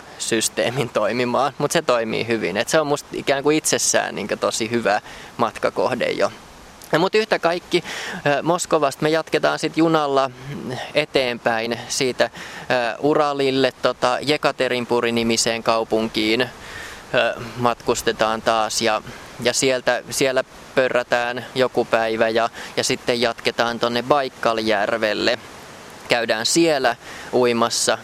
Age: 20-39